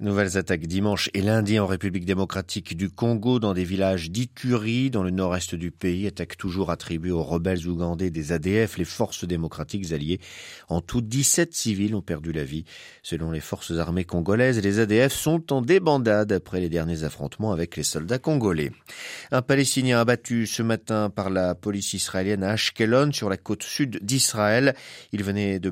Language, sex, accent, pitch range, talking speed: French, male, French, 85-115 Hz, 175 wpm